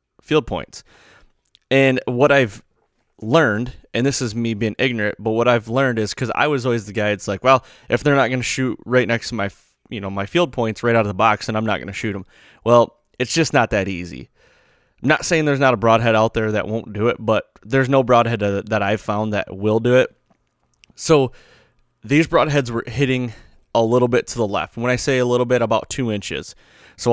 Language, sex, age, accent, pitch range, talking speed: English, male, 20-39, American, 110-130 Hz, 230 wpm